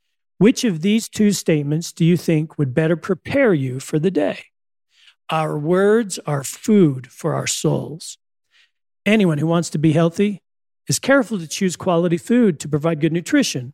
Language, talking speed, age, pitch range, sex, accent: English, 165 wpm, 40-59, 155-205 Hz, male, American